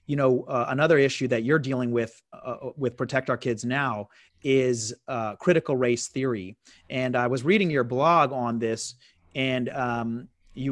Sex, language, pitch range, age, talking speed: male, English, 120-155 Hz, 30-49, 175 wpm